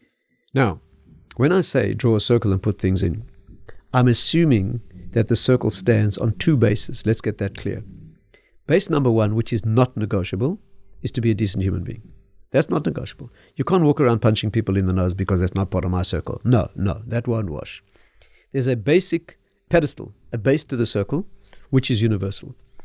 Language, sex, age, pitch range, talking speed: English, male, 50-69, 105-150 Hz, 195 wpm